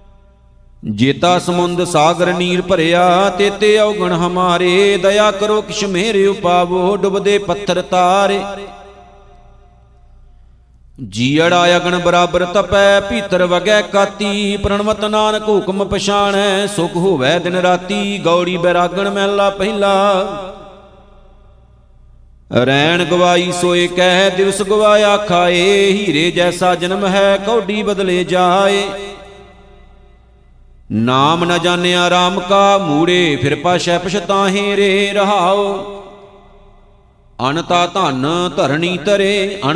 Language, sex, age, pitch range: Punjabi, male, 50-69, 175-200 Hz